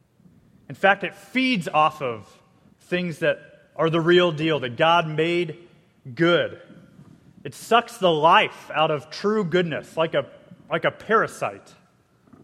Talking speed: 140 wpm